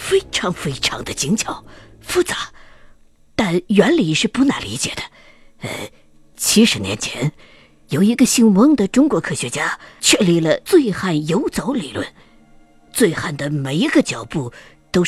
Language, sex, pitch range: Chinese, female, 165-245 Hz